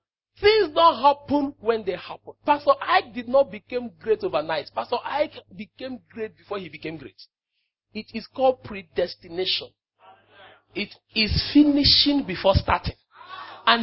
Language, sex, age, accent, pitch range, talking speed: English, male, 40-59, Nigerian, 240-335 Hz, 135 wpm